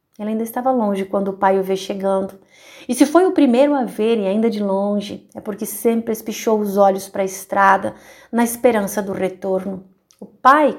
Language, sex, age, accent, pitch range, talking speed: Portuguese, female, 30-49, Brazilian, 205-285 Hz, 200 wpm